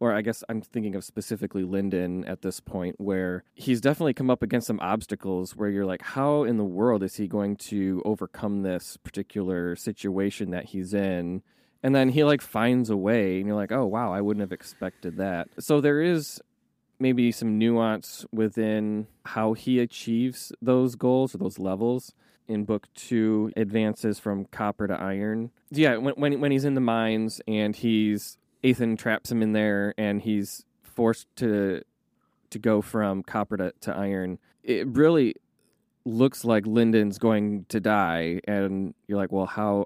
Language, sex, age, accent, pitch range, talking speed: English, male, 20-39, American, 100-120 Hz, 175 wpm